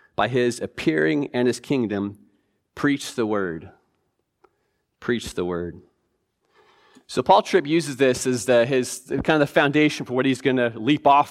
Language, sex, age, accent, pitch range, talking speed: English, male, 40-59, American, 115-150 Hz, 160 wpm